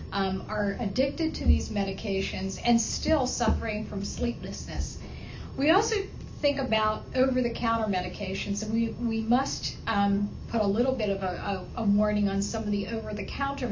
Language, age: English, 50-69